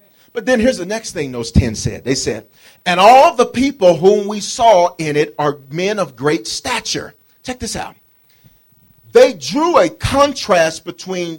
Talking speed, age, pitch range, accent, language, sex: 175 wpm, 40-59, 150-235 Hz, American, English, male